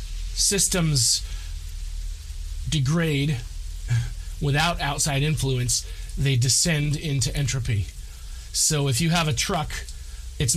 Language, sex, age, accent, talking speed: English, male, 30-49, American, 90 wpm